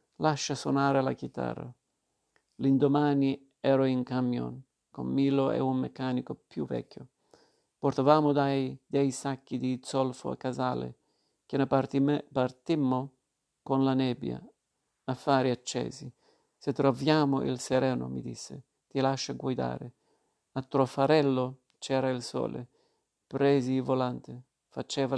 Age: 50-69